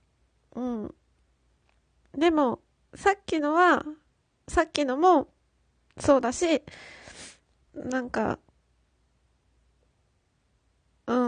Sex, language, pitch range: female, Japanese, 250-310 Hz